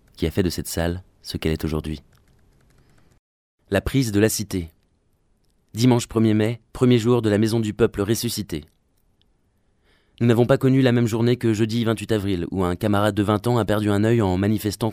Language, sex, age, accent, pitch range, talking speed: French, male, 20-39, French, 95-115 Hz, 195 wpm